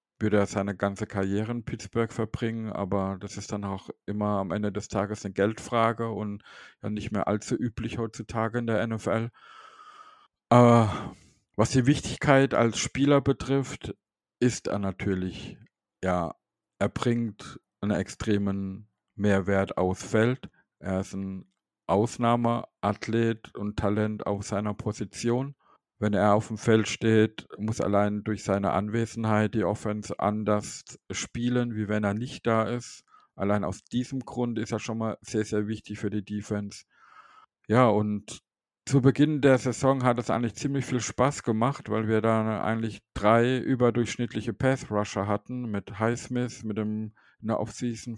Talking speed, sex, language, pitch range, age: 150 wpm, male, German, 105-120 Hz, 50-69